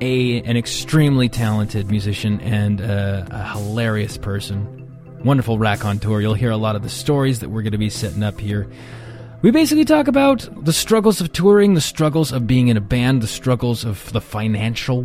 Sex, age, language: male, 20-39, English